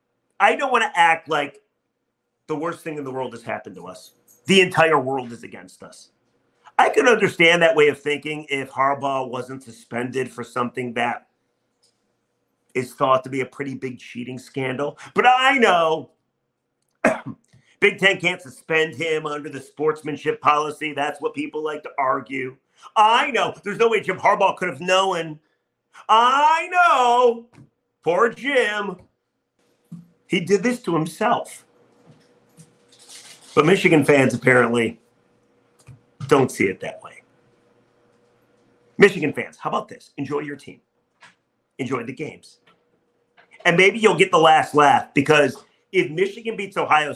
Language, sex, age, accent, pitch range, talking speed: English, male, 40-59, American, 130-175 Hz, 145 wpm